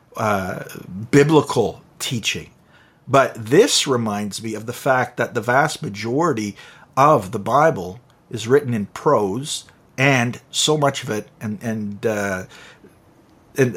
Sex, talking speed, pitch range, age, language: male, 130 wpm, 105-135 Hz, 50-69, English